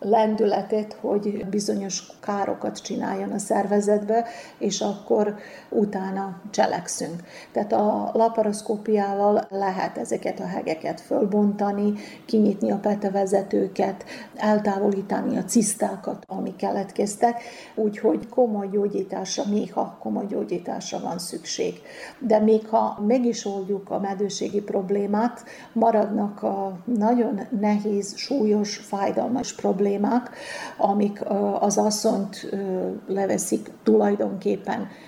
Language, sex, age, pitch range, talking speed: Hungarian, female, 50-69, 200-220 Hz, 95 wpm